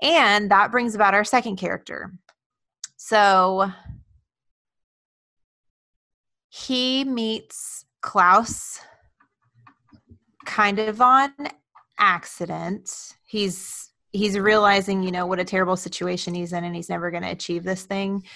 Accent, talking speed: American, 110 wpm